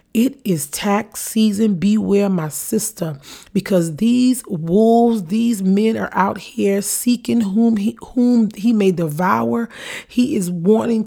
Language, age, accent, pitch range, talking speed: English, 30-49, American, 175-215 Hz, 130 wpm